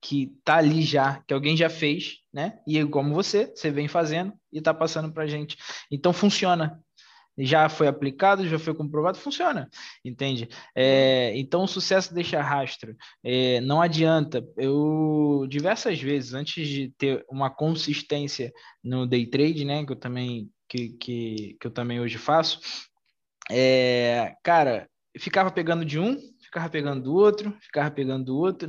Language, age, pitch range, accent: Portuguese, 20-39, 140-200 Hz, Brazilian